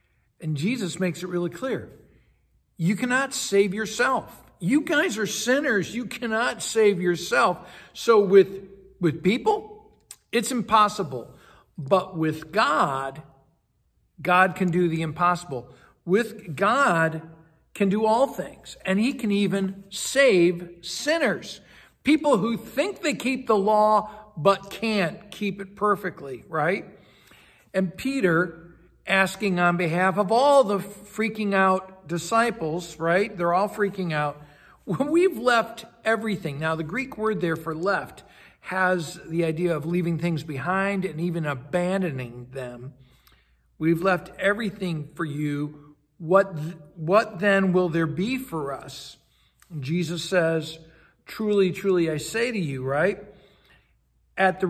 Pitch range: 165-210 Hz